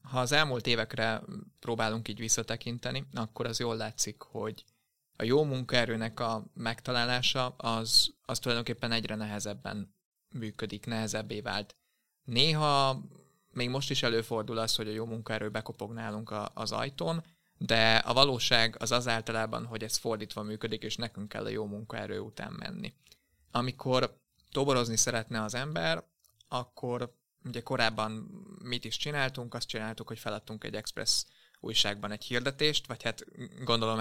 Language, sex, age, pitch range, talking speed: Hungarian, male, 20-39, 110-125 Hz, 140 wpm